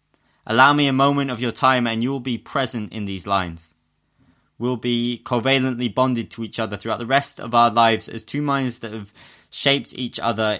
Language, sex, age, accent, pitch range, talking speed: English, male, 20-39, British, 80-120 Hz, 205 wpm